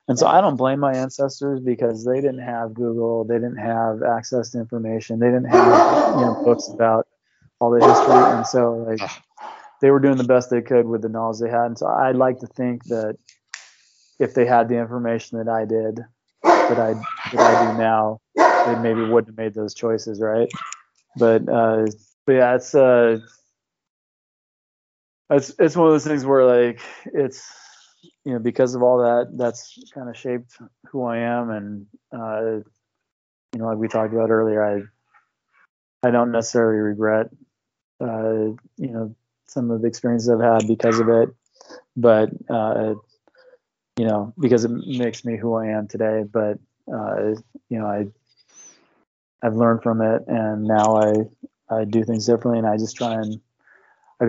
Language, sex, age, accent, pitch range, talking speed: English, male, 20-39, American, 110-125 Hz, 180 wpm